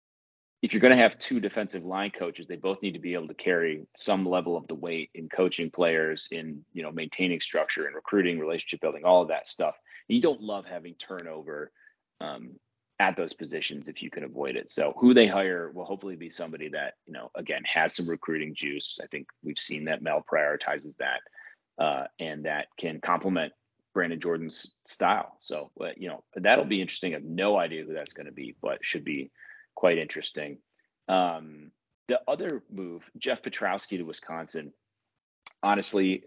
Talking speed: 185 wpm